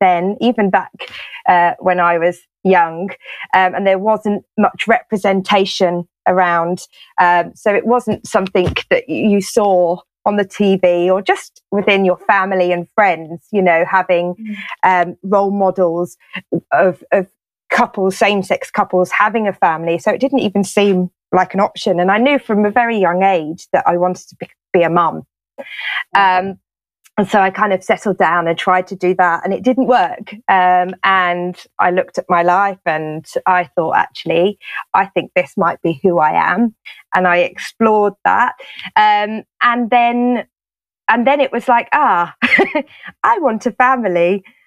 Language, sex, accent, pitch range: English, female, British, 180-230 Hz